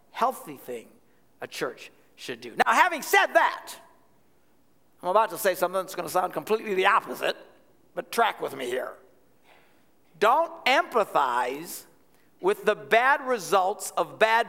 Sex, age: male, 60-79